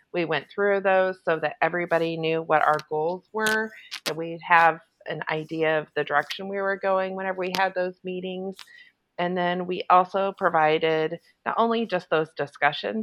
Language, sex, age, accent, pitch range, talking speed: English, female, 40-59, American, 155-185 Hz, 175 wpm